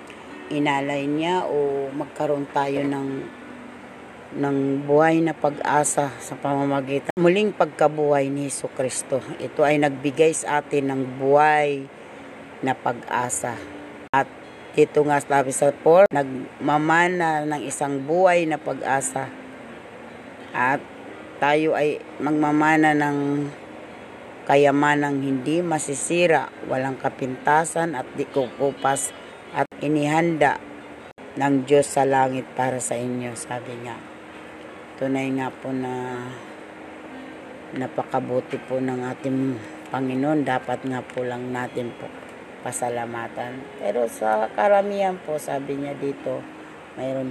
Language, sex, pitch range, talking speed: Filipino, female, 130-150 Hz, 105 wpm